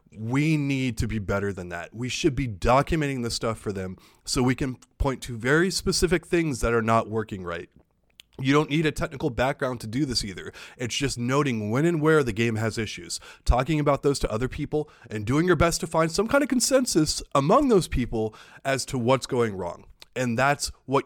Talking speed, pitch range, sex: 215 wpm, 115-155 Hz, male